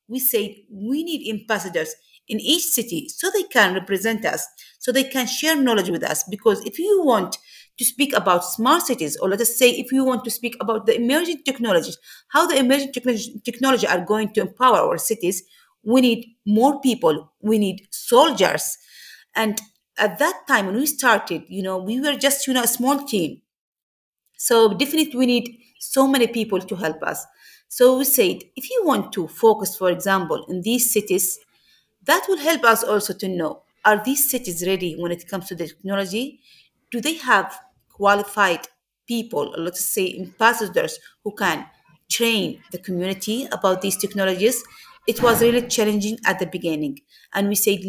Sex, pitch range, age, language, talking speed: female, 195-255 Hz, 40-59, English, 180 wpm